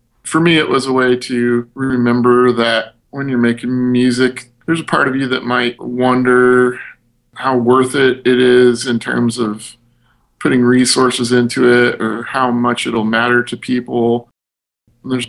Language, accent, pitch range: English, American, 115-125 Hz